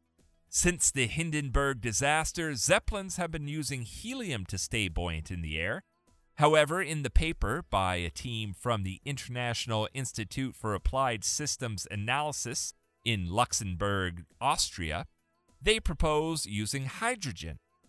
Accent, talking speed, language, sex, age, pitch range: American, 125 wpm, English, male, 40-59, 95-155 Hz